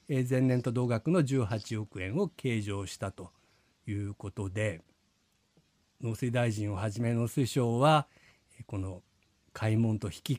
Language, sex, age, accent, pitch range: Japanese, male, 50-69, native, 105-150 Hz